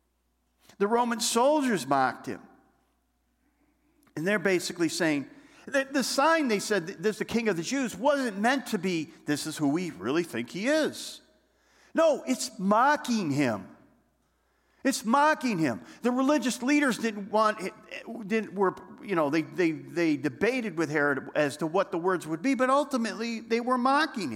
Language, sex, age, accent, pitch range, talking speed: English, male, 50-69, American, 170-255 Hz, 165 wpm